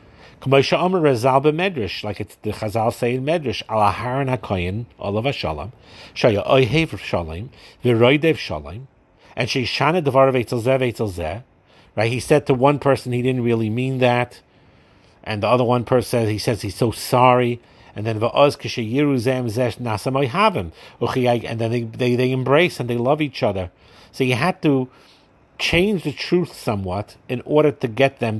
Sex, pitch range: male, 105-135 Hz